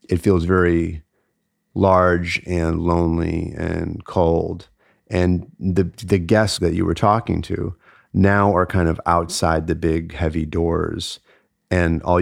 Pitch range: 85-100 Hz